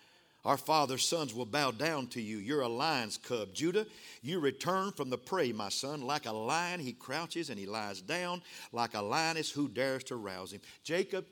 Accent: American